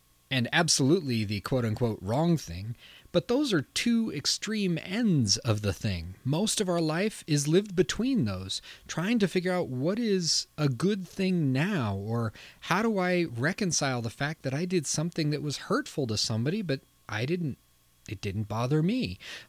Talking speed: 170 wpm